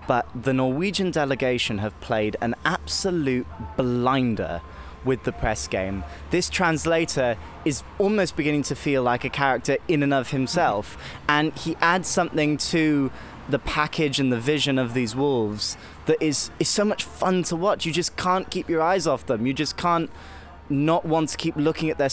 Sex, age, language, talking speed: male, 20-39, English, 180 wpm